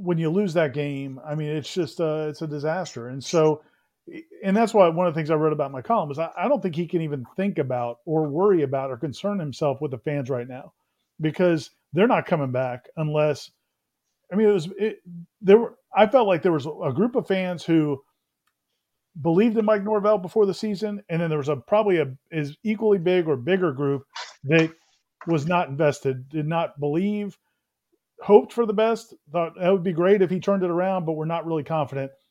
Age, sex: 40-59, male